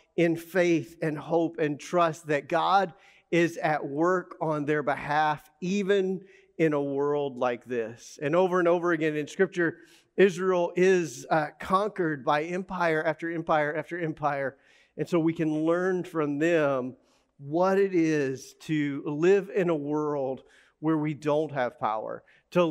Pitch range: 145-175 Hz